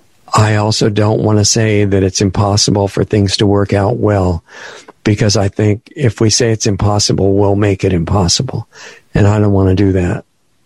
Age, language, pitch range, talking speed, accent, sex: 50-69, English, 100-110 Hz, 190 wpm, American, male